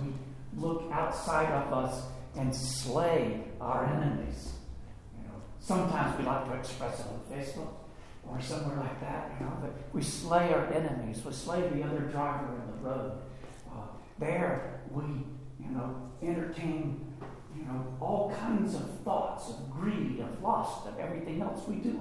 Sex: male